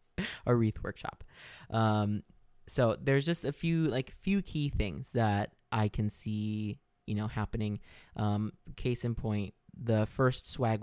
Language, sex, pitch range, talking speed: English, male, 105-120 Hz, 150 wpm